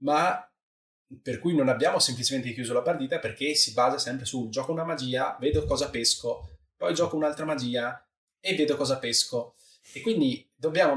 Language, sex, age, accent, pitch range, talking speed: Italian, male, 20-39, native, 115-155 Hz, 170 wpm